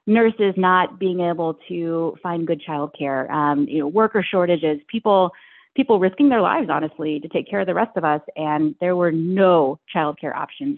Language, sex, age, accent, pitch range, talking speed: English, female, 30-49, American, 160-195 Hz, 185 wpm